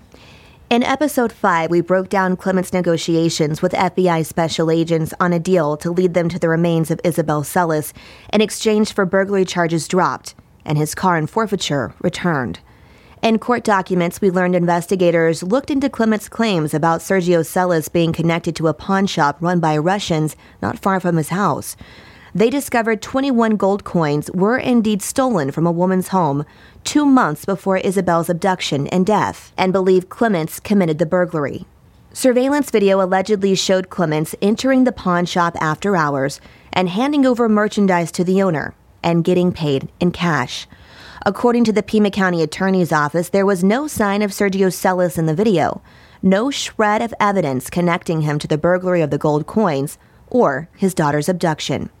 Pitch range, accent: 165-205 Hz, American